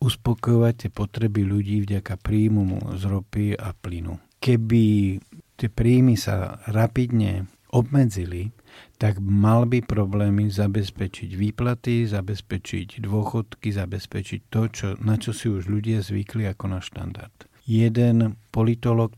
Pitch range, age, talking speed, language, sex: 100-115 Hz, 50-69, 115 wpm, Slovak, male